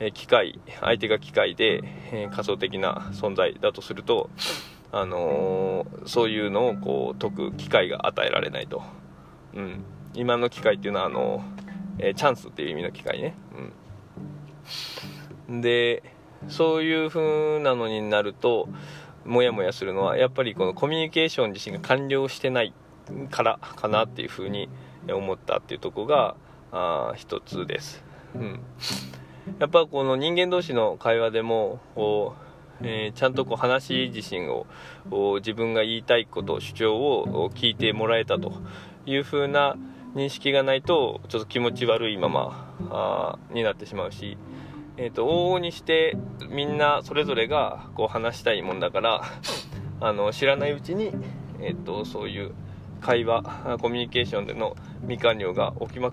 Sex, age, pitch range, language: male, 20-39, 110-150 Hz, Japanese